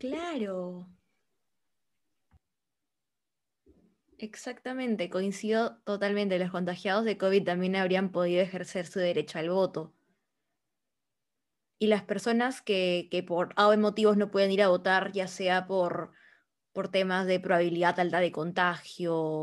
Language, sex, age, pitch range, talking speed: Spanish, female, 20-39, 180-210 Hz, 120 wpm